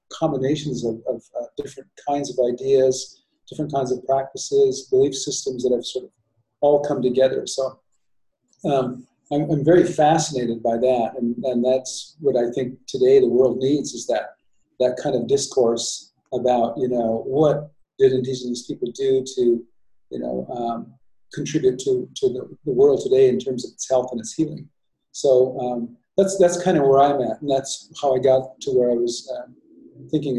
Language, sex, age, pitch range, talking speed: English, male, 40-59, 125-150 Hz, 180 wpm